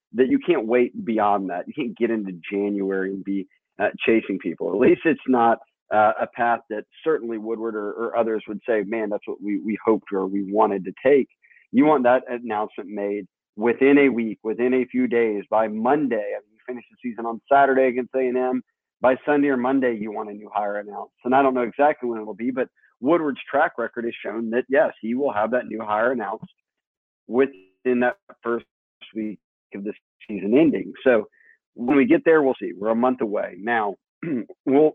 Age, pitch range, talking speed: 40-59, 105-130 Hz, 210 wpm